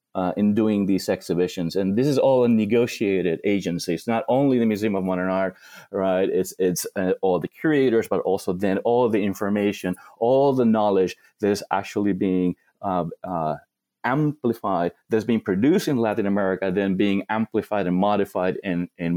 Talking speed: 175 wpm